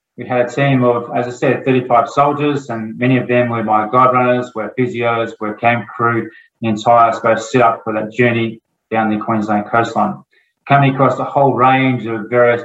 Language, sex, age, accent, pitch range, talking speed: English, male, 20-39, Australian, 115-130 Hz, 205 wpm